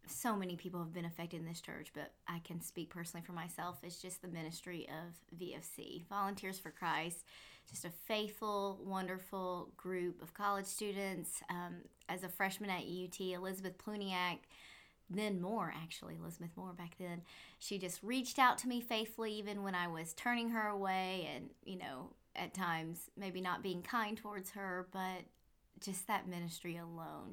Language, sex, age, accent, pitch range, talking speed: English, female, 20-39, American, 175-200 Hz, 170 wpm